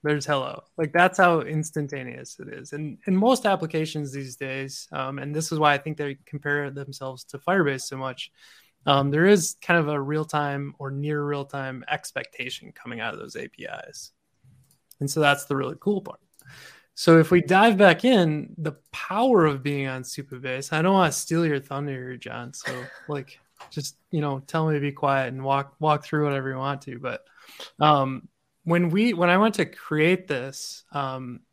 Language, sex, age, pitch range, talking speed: English, male, 20-39, 140-165 Hz, 190 wpm